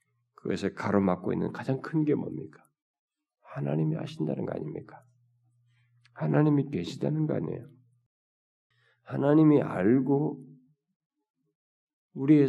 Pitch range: 120-160 Hz